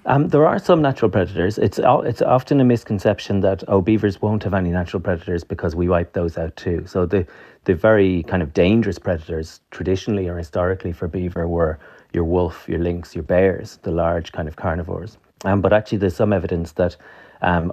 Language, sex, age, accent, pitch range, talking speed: English, male, 30-49, Irish, 85-100 Hz, 195 wpm